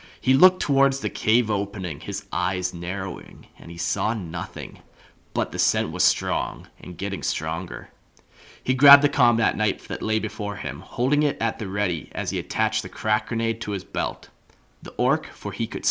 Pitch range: 95-120 Hz